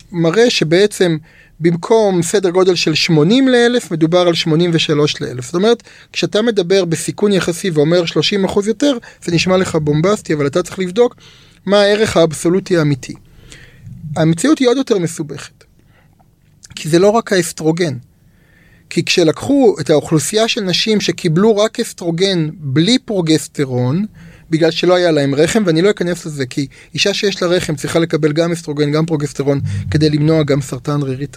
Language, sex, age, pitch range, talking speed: Hebrew, male, 30-49, 155-220 Hz, 155 wpm